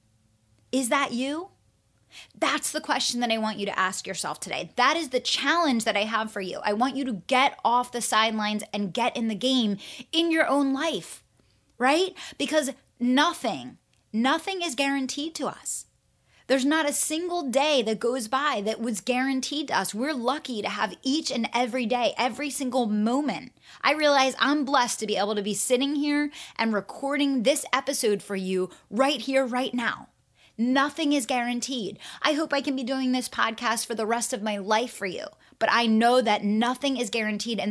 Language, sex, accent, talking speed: English, female, American, 190 wpm